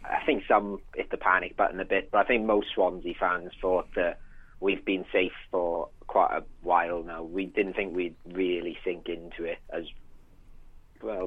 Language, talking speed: English, 185 wpm